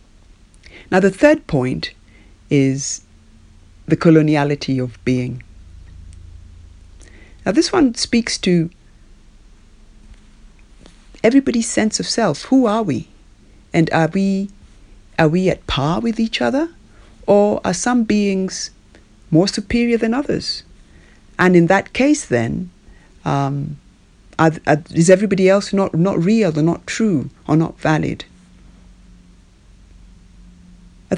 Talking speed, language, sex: 115 wpm, English, female